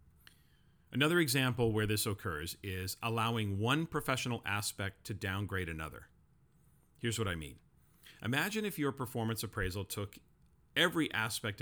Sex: male